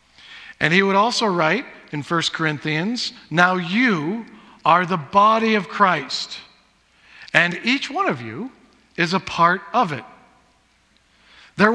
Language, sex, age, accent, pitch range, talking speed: English, male, 50-69, American, 170-225 Hz, 135 wpm